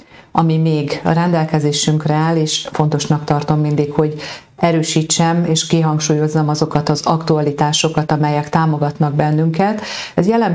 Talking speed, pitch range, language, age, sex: 120 wpm, 150-170 Hz, Hungarian, 40-59, female